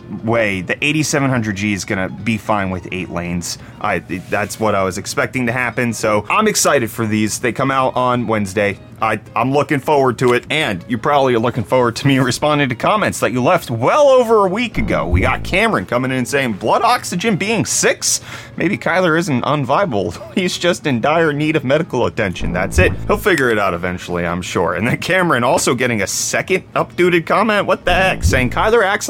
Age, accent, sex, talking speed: 30-49, American, male, 200 wpm